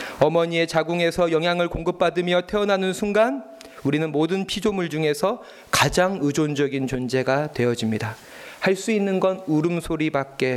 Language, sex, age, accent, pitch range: Korean, male, 40-59, native, 145-195 Hz